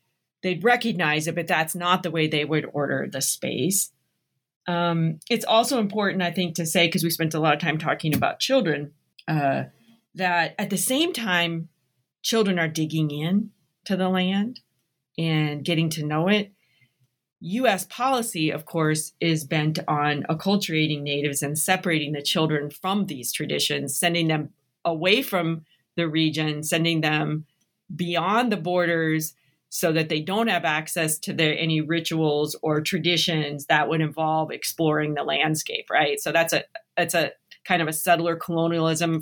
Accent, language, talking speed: American, English, 160 wpm